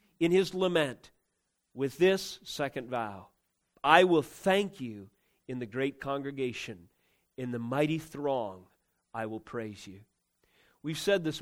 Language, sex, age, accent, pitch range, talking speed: English, male, 40-59, American, 120-160 Hz, 135 wpm